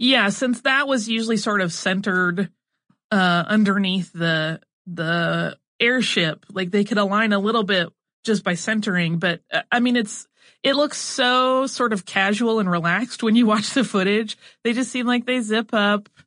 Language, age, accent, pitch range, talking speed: English, 30-49, American, 180-235 Hz, 175 wpm